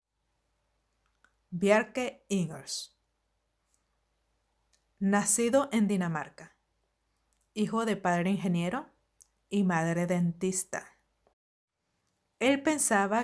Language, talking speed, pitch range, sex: Spanish, 65 wpm, 180-225 Hz, female